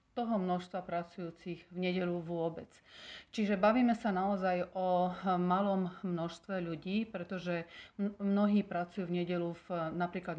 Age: 40-59